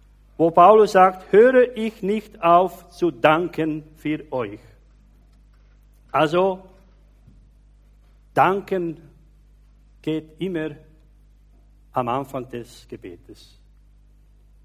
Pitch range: 150-195 Hz